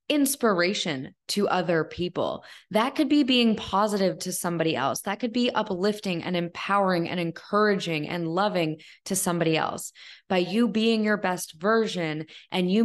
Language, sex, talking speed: English, female, 155 wpm